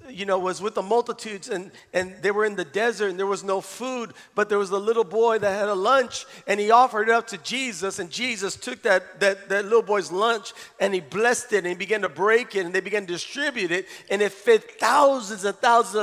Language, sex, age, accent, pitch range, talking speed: English, male, 40-59, American, 195-245 Hz, 245 wpm